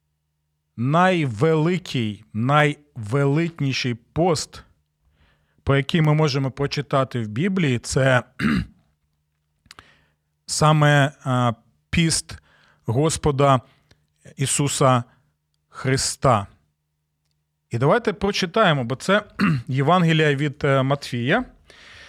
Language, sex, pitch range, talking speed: Ukrainian, male, 125-185 Hz, 65 wpm